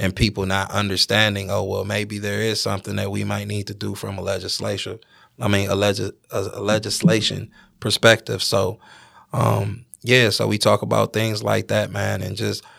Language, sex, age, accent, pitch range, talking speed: English, male, 20-39, American, 100-110 Hz, 190 wpm